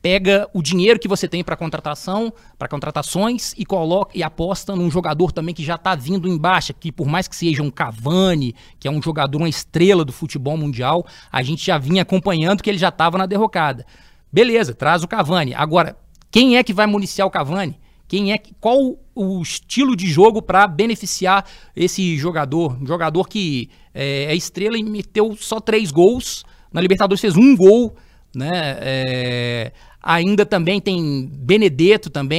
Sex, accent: male, Brazilian